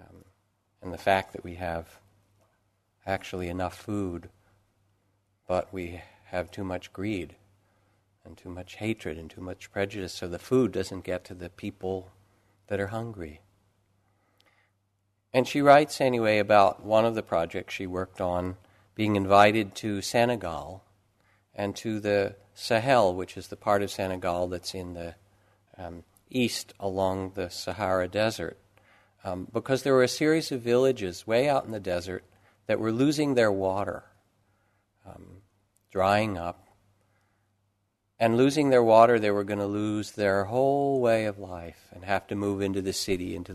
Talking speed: 155 wpm